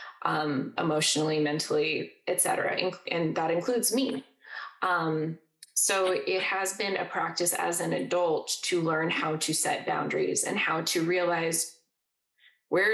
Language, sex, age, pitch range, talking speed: English, female, 20-39, 160-195 Hz, 140 wpm